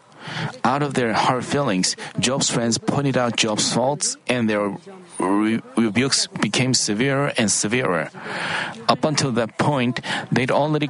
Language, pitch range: Korean, 120-150 Hz